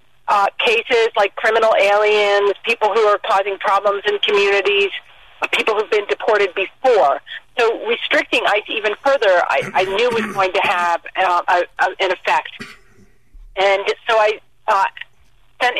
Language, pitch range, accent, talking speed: English, 185-245 Hz, American, 150 wpm